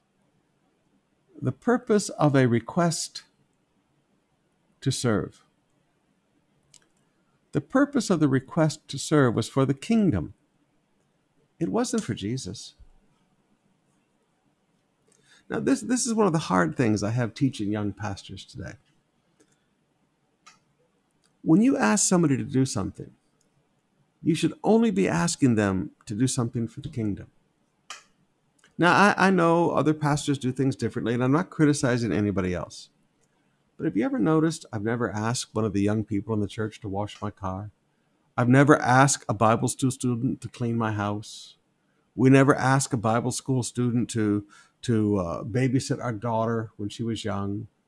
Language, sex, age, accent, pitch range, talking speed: English, male, 60-79, American, 110-150 Hz, 150 wpm